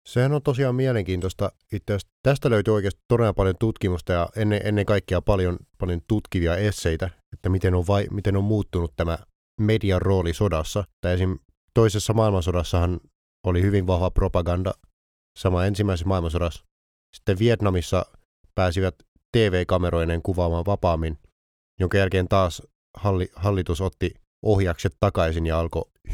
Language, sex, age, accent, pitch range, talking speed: Finnish, male, 30-49, native, 85-100 Hz, 135 wpm